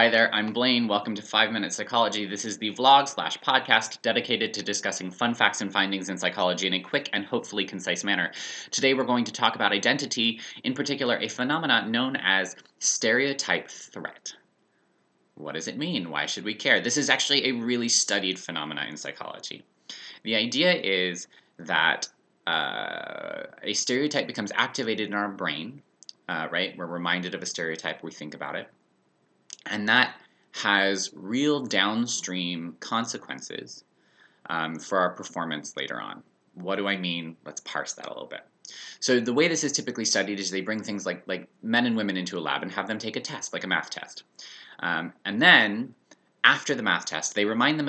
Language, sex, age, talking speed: English, male, 20-39, 180 wpm